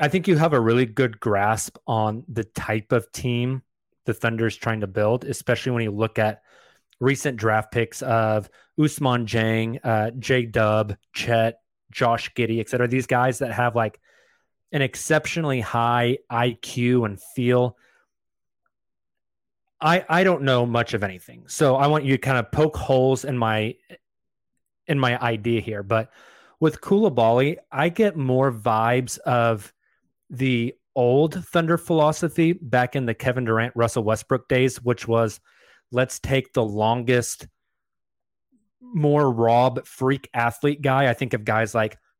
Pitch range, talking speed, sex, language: 115-135 Hz, 150 wpm, male, English